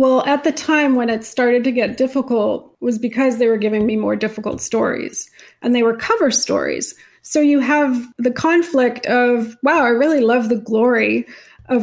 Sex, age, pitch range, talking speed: female, 30-49, 225-260 Hz, 190 wpm